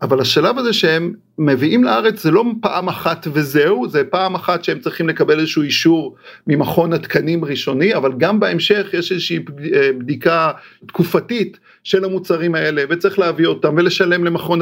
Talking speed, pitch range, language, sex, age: 150 wpm, 170-210 Hz, Hebrew, male, 50-69